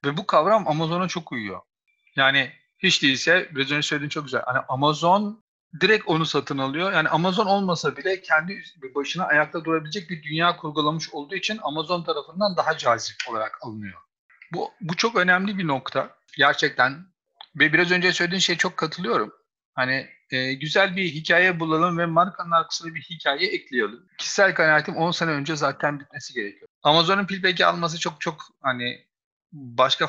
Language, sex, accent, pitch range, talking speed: Turkish, male, native, 145-180 Hz, 160 wpm